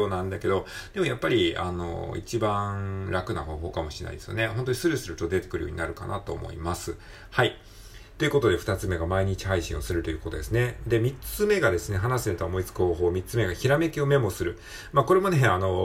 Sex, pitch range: male, 90-120 Hz